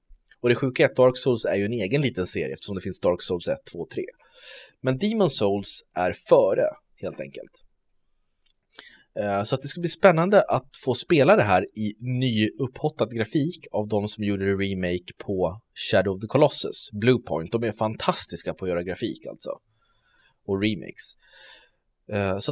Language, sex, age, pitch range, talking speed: Swedish, male, 20-39, 95-135 Hz, 170 wpm